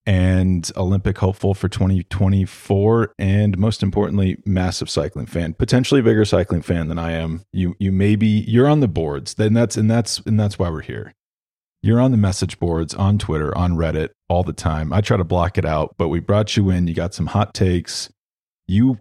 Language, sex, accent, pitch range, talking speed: English, male, American, 90-105 Hz, 210 wpm